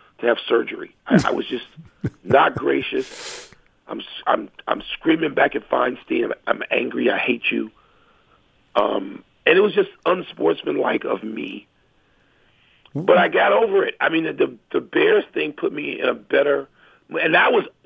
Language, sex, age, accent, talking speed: English, male, 40-59, American, 170 wpm